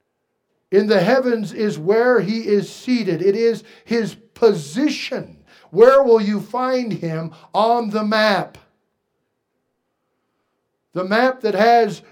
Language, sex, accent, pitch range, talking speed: English, male, American, 160-225 Hz, 120 wpm